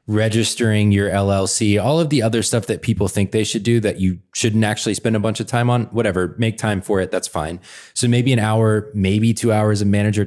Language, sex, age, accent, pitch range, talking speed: English, male, 20-39, American, 95-120 Hz, 235 wpm